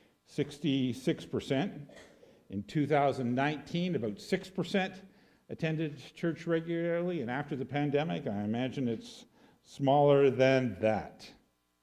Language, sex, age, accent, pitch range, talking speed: English, male, 50-69, American, 120-165 Hz, 85 wpm